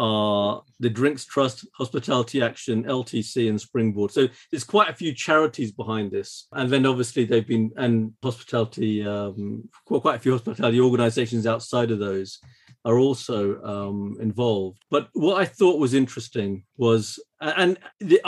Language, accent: English, British